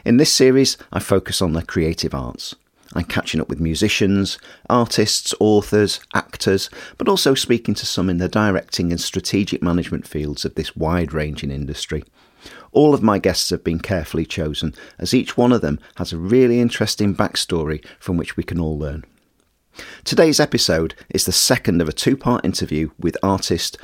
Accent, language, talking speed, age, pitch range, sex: British, English, 170 wpm, 40-59, 85-115 Hz, male